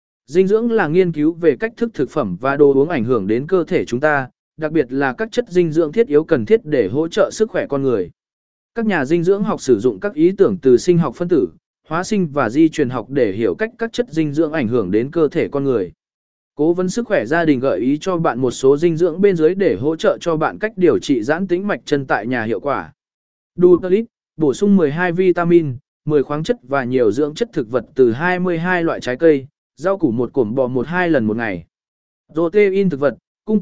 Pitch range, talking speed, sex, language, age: 145-195 Hz, 245 wpm, male, Vietnamese, 20-39